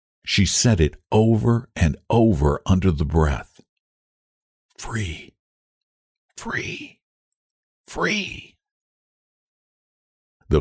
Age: 60-79